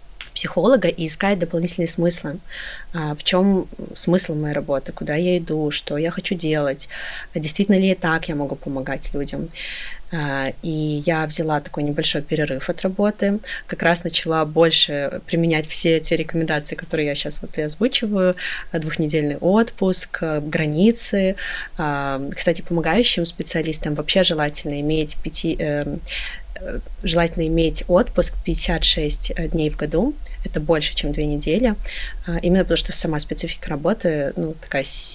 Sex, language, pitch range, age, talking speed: female, Russian, 150-180 Hz, 20-39, 130 wpm